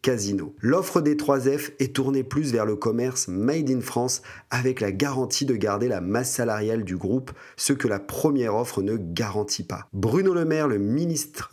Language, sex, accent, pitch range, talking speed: French, male, French, 110-140 Hz, 180 wpm